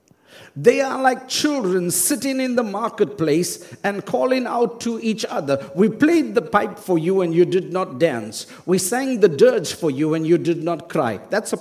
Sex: male